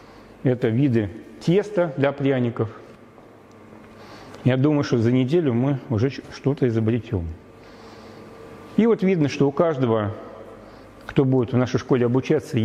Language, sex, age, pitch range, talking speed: Russian, male, 40-59, 115-155 Hz, 125 wpm